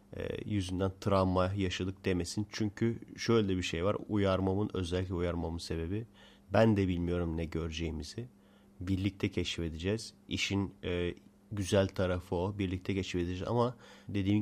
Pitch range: 90-100 Hz